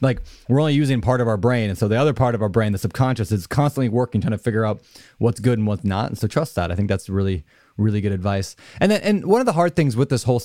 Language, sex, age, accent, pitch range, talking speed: English, male, 20-39, American, 120-155 Hz, 295 wpm